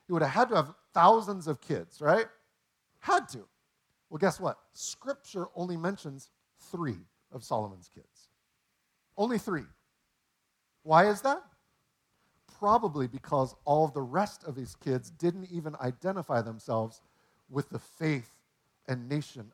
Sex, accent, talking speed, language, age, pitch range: male, American, 130 wpm, English, 50-69, 125-190 Hz